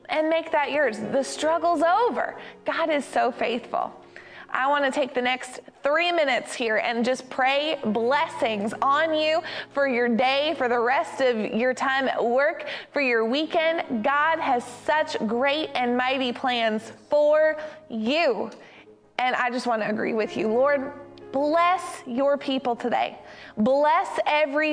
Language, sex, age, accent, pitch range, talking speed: English, female, 20-39, American, 255-310 Hz, 155 wpm